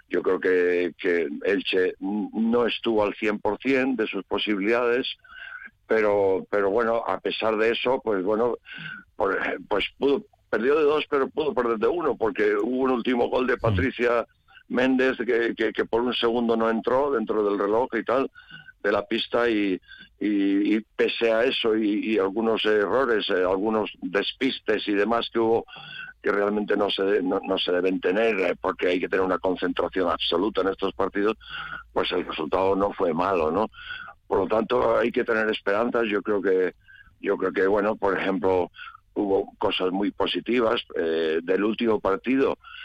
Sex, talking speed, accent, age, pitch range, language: male, 175 wpm, Spanish, 60-79, 95-130 Hz, Spanish